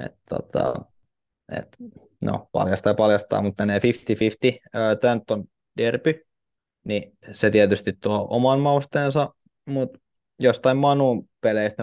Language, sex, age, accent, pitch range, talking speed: Finnish, male, 20-39, native, 100-115 Hz, 115 wpm